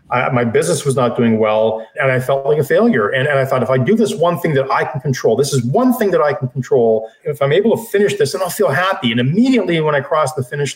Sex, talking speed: male, 290 wpm